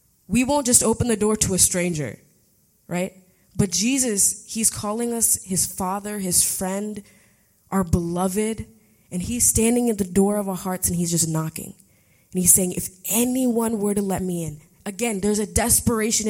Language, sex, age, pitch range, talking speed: English, female, 20-39, 185-235 Hz, 175 wpm